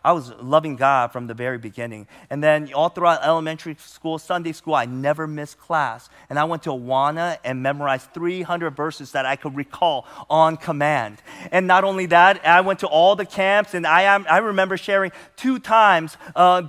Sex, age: male, 30-49